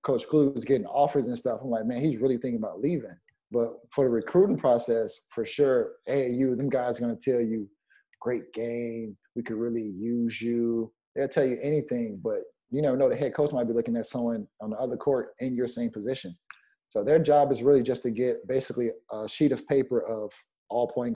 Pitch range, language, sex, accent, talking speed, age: 115-135 Hz, English, male, American, 220 wpm, 20-39